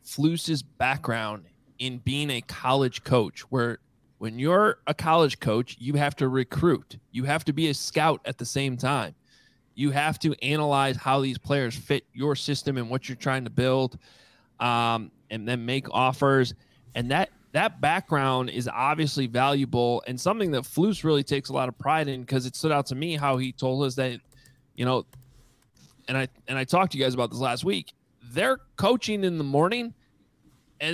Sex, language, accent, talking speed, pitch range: male, English, American, 190 wpm, 130-155 Hz